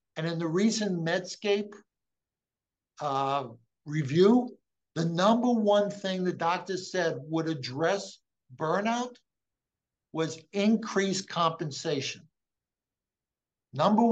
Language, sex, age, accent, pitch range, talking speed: English, male, 60-79, American, 165-205 Hz, 90 wpm